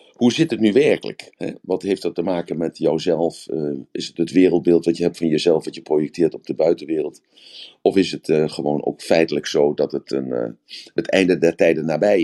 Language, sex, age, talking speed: Dutch, male, 50-69, 205 wpm